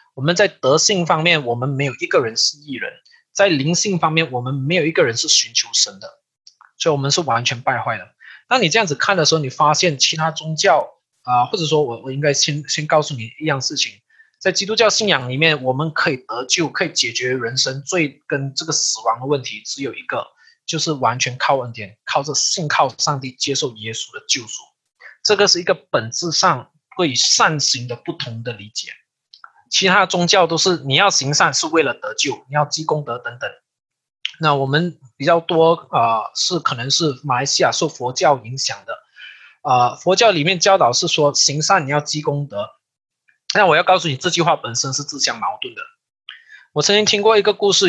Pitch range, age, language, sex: 135-175 Hz, 20-39, Chinese, male